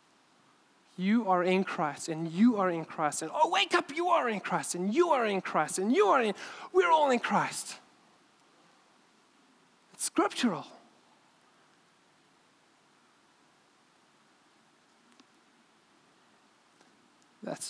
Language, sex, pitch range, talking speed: English, male, 175-215 Hz, 110 wpm